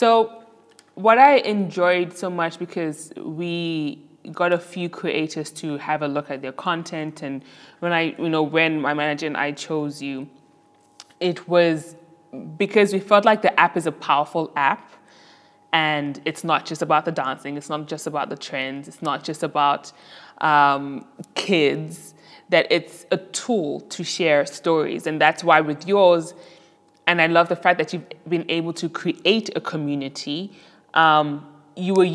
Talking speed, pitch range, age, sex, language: 170 wpm, 150-185 Hz, 20-39, female, English